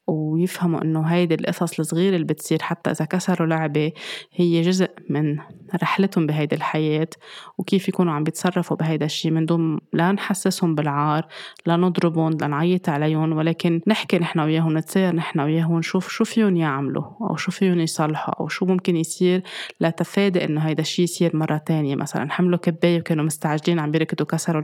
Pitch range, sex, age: 155-180 Hz, female, 20-39